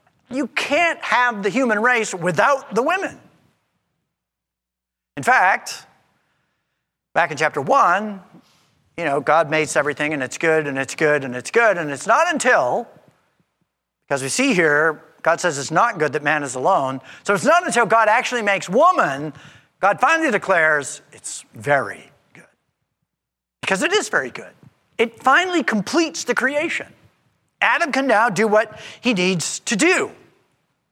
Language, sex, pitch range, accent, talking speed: English, male, 155-235 Hz, American, 155 wpm